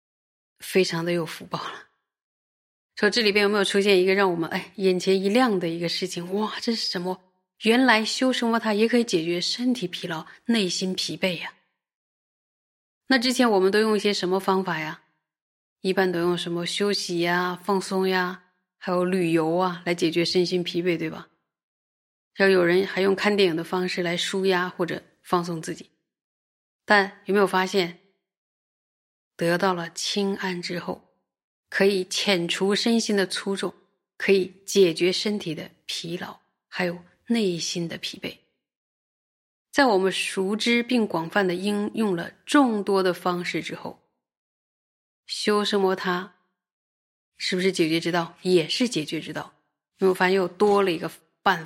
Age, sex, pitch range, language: 30-49, female, 175-200 Hz, Chinese